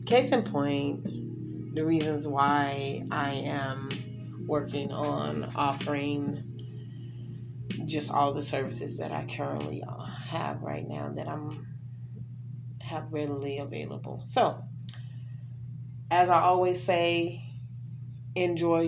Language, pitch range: English, 125-170 Hz